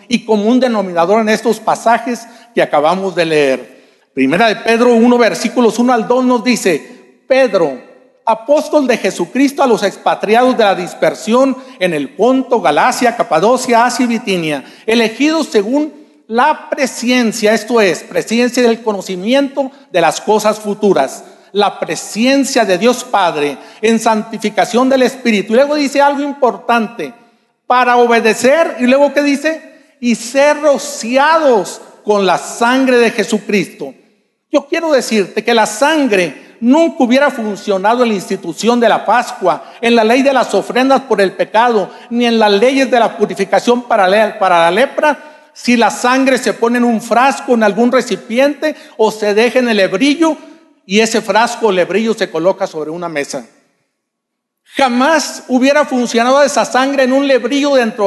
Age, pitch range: 50-69, 210-265 Hz